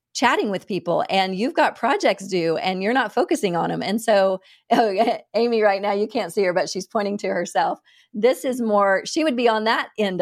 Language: English